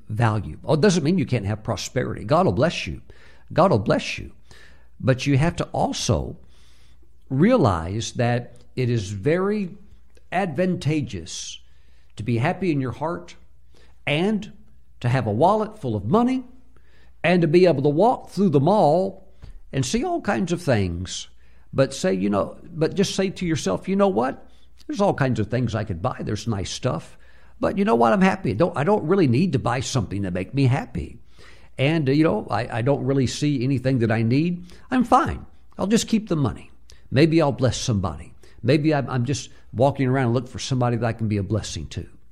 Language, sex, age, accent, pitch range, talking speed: English, male, 60-79, American, 105-165 Hz, 195 wpm